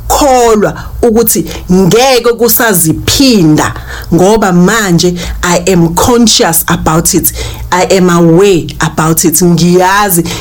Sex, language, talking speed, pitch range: female, English, 105 wpm, 170-215 Hz